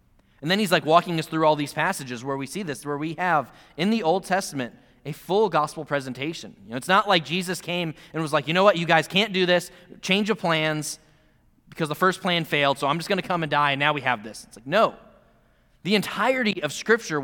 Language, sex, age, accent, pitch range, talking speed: English, male, 20-39, American, 145-195 Hz, 245 wpm